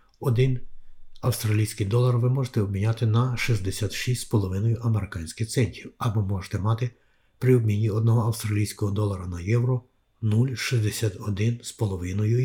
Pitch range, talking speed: 100-120 Hz, 100 wpm